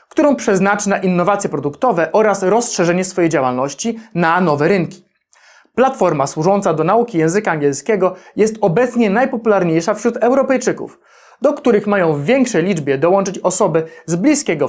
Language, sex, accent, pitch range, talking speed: Polish, male, native, 180-235 Hz, 135 wpm